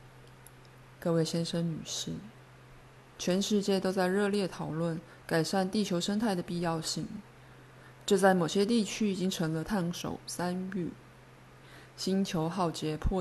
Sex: female